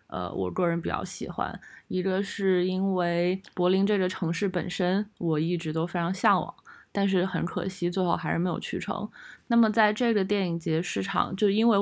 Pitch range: 170-205 Hz